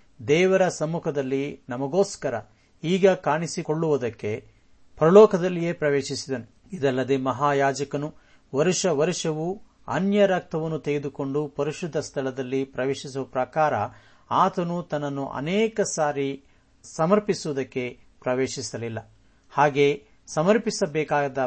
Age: 50-69